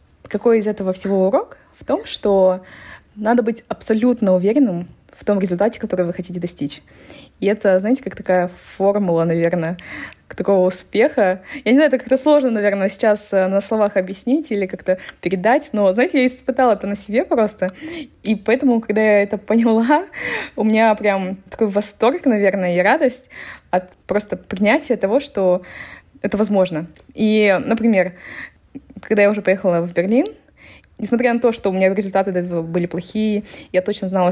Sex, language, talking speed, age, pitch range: female, Russian, 160 wpm, 20-39, 180-225 Hz